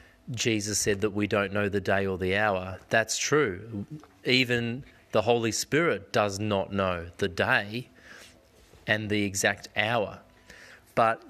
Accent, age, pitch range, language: Australian, 30-49, 100-125 Hz, English